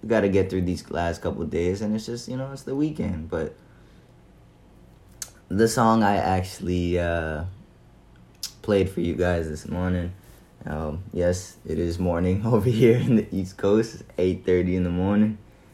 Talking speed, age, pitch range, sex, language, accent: 170 wpm, 20-39, 85-105 Hz, male, English, American